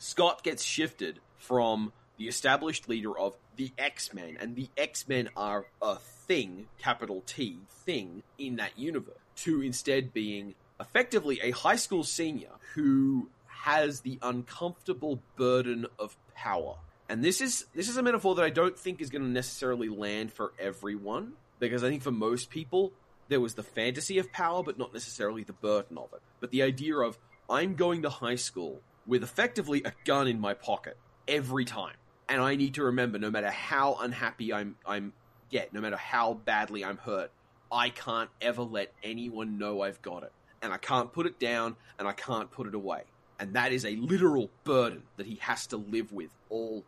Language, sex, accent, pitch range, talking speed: English, male, Australian, 110-140 Hz, 185 wpm